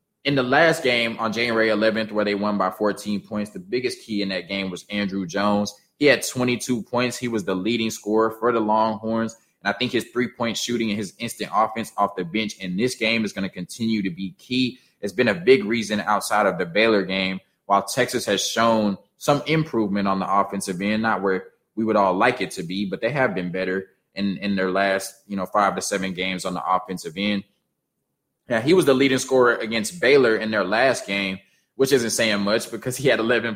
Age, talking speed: 20-39, 225 wpm